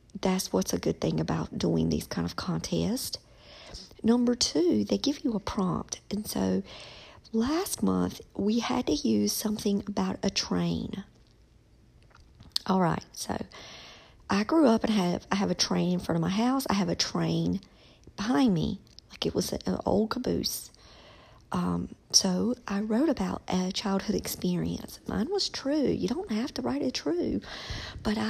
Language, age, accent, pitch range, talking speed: English, 50-69, American, 180-235 Hz, 165 wpm